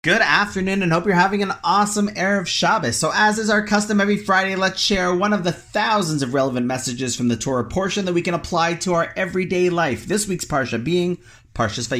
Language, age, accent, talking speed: English, 30-49, American, 210 wpm